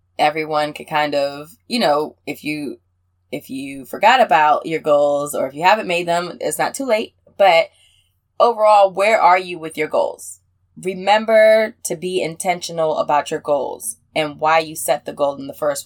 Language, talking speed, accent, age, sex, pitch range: English, 180 wpm, American, 20-39, female, 155-220 Hz